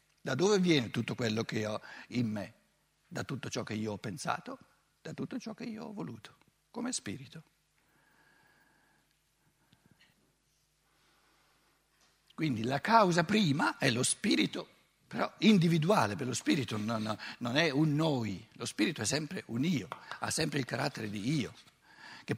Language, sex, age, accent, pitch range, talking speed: Italian, male, 60-79, native, 130-195 Hz, 145 wpm